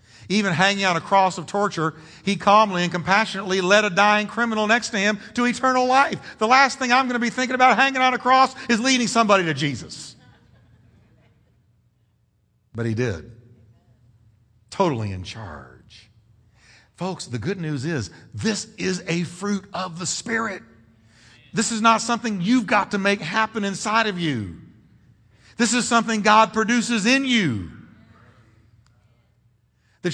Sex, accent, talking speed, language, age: male, American, 155 wpm, English, 50-69